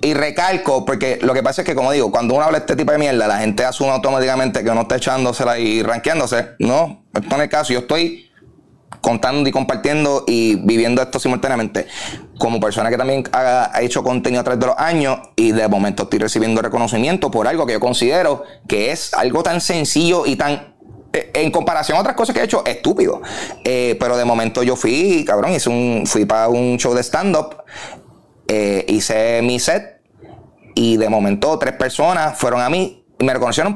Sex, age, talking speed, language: male, 30-49, 200 wpm, Spanish